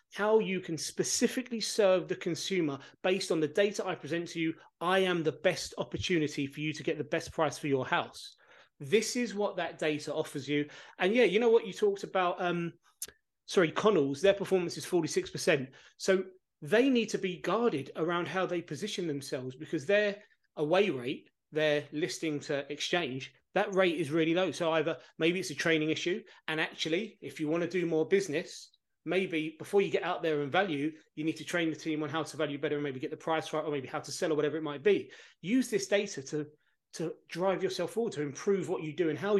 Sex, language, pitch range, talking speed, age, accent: male, English, 150-190 Hz, 215 wpm, 30-49, British